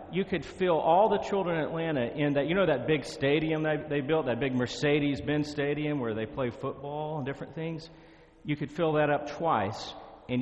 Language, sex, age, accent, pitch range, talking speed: German, male, 40-59, American, 120-155 Hz, 205 wpm